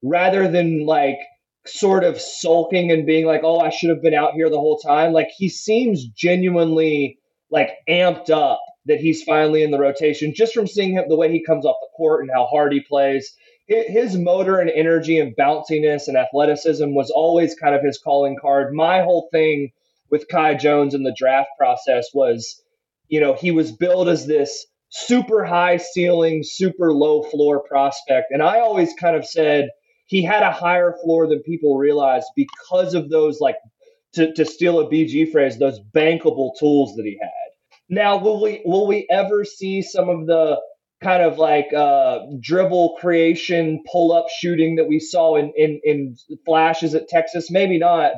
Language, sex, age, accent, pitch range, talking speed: English, male, 20-39, American, 150-185 Hz, 185 wpm